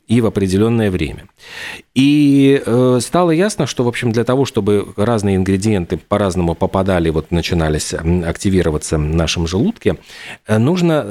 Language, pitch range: Russian, 95-125 Hz